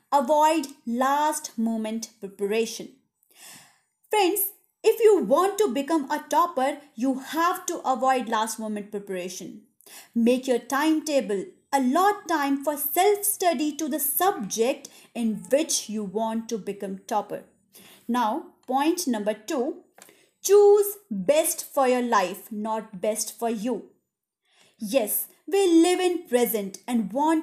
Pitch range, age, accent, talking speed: 225-340 Hz, 30-49, native, 130 wpm